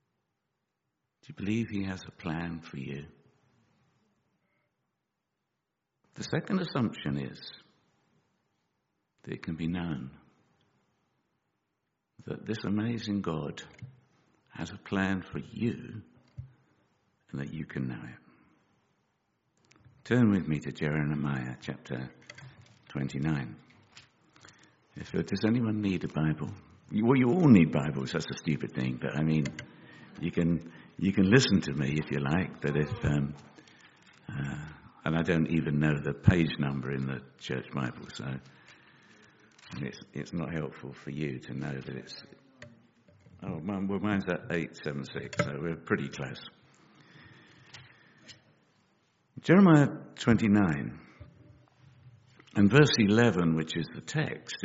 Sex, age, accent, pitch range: male, 60-79, British, 70-105 Hz